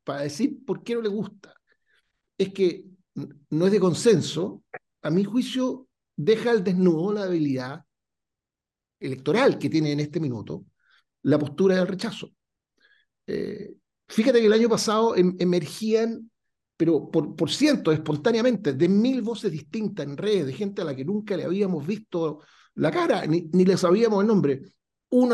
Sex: male